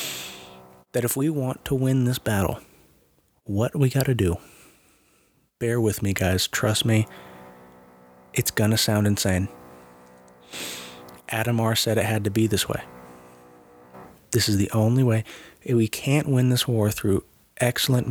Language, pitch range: English, 80-125 Hz